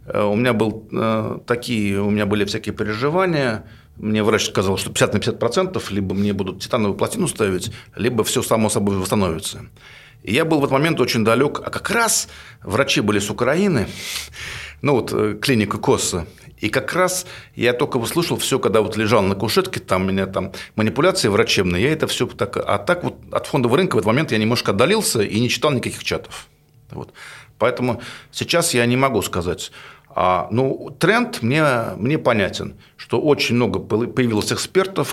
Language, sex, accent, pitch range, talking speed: Russian, male, native, 100-130 Hz, 175 wpm